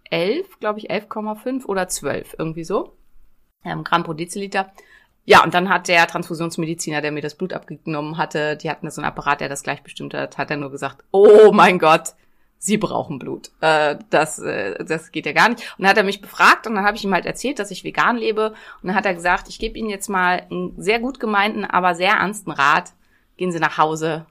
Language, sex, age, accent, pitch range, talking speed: German, female, 30-49, German, 170-215 Hz, 220 wpm